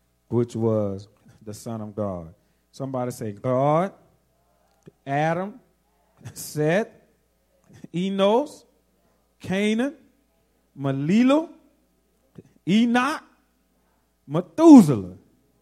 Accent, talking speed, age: American, 60 wpm, 40-59